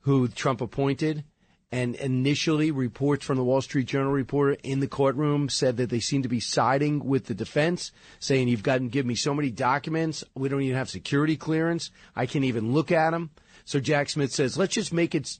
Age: 40-59